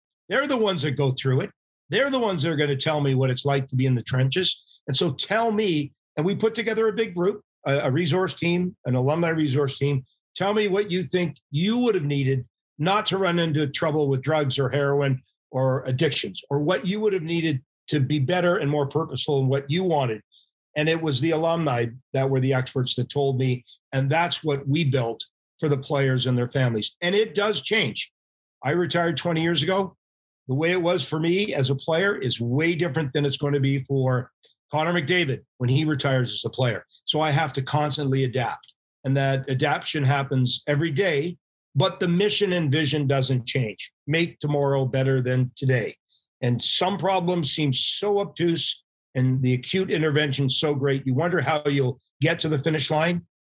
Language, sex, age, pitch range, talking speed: English, male, 50-69, 130-170 Hz, 205 wpm